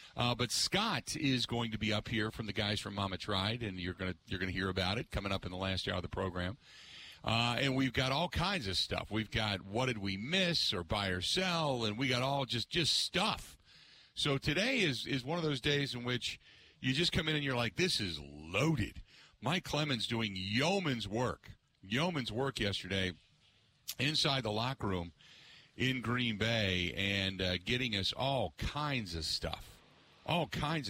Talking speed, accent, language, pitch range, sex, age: 200 wpm, American, English, 100-135 Hz, male, 50-69